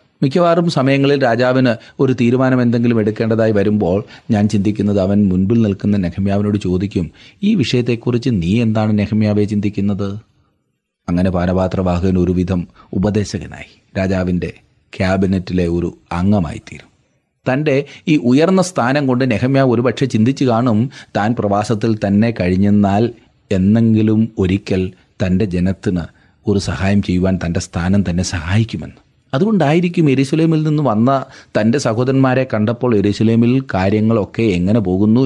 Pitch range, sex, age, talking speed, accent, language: 100-120 Hz, male, 30-49, 105 wpm, native, Malayalam